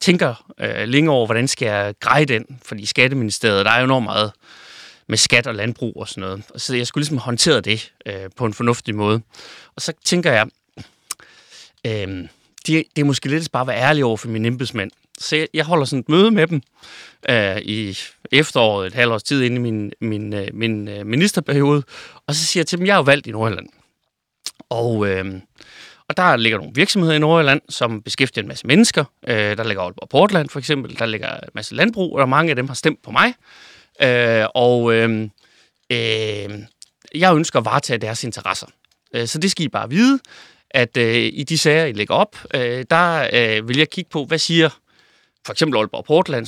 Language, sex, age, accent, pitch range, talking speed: Danish, male, 30-49, native, 110-155 Hz, 190 wpm